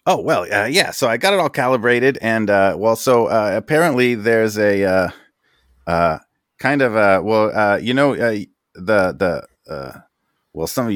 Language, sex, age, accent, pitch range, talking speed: English, male, 30-49, American, 95-135 Hz, 185 wpm